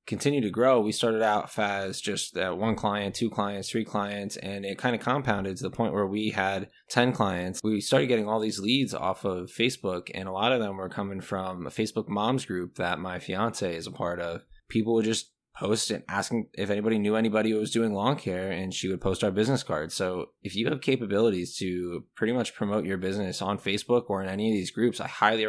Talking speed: 235 wpm